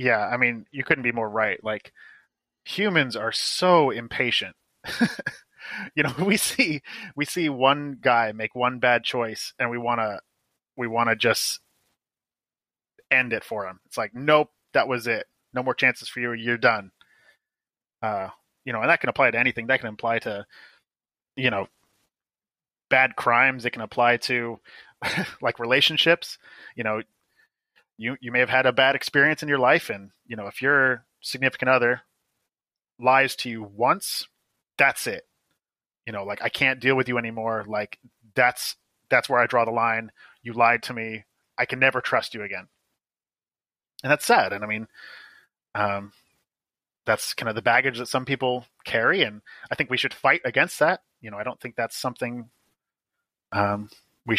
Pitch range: 110-130 Hz